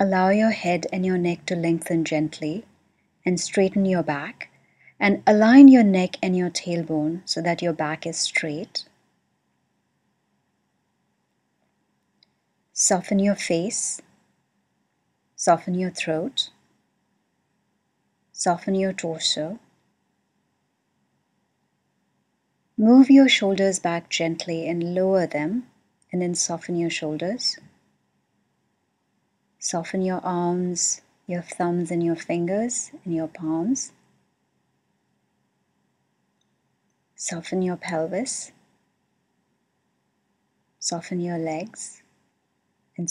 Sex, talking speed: female, 90 wpm